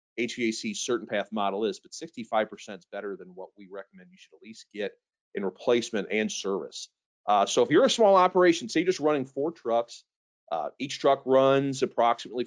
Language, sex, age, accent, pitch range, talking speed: English, male, 40-59, American, 115-165 Hz, 195 wpm